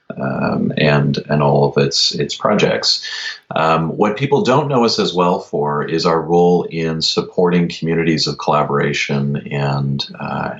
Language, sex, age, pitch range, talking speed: English, male, 30-49, 75-90 Hz, 155 wpm